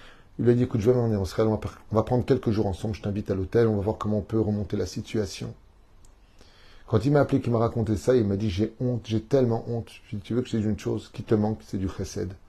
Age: 30-49